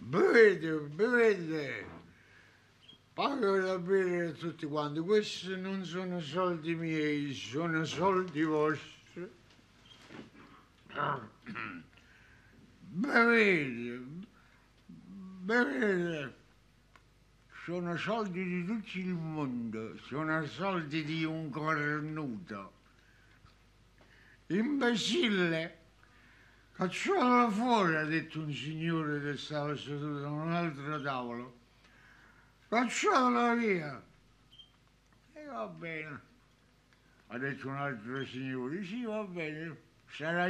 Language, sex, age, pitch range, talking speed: Italian, male, 60-79, 130-185 Hz, 85 wpm